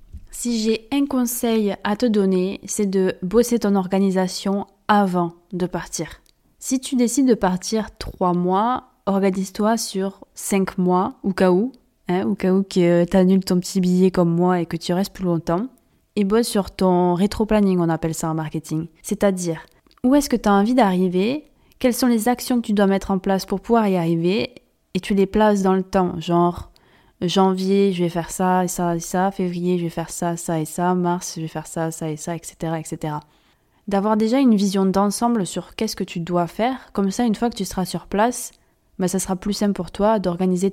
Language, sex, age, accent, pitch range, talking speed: French, female, 20-39, French, 180-215 Hz, 210 wpm